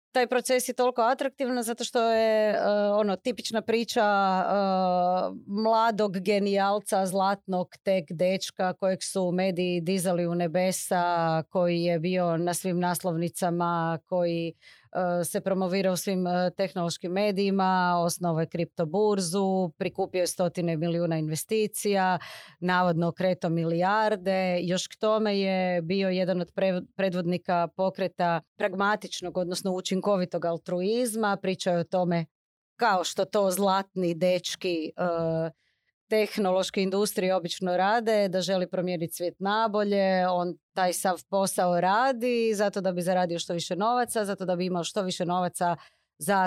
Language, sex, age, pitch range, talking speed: Croatian, female, 30-49, 175-210 Hz, 130 wpm